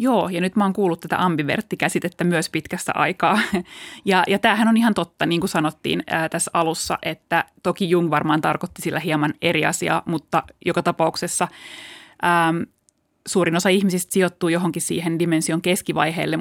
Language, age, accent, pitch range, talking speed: Finnish, 20-39, native, 165-195 Hz, 160 wpm